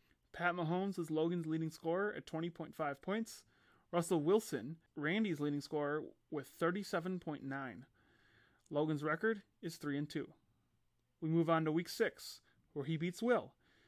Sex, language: male, English